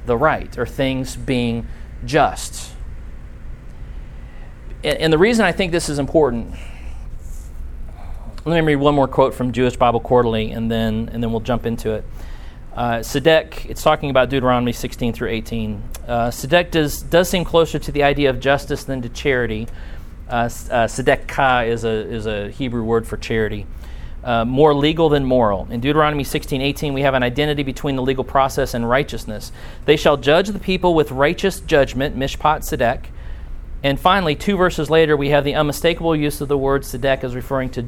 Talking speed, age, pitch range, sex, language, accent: 180 wpm, 40-59, 110-150 Hz, male, English, American